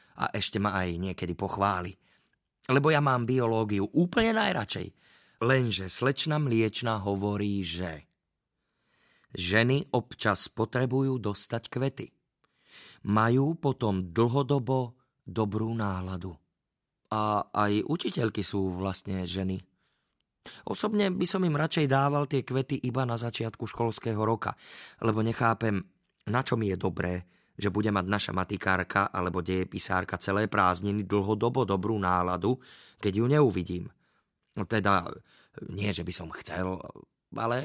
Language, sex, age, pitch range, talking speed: Slovak, male, 30-49, 95-125 Hz, 120 wpm